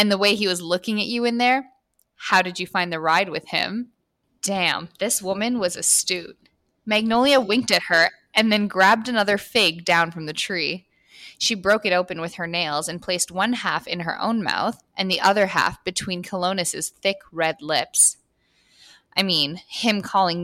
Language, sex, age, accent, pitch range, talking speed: English, female, 10-29, American, 170-210 Hz, 190 wpm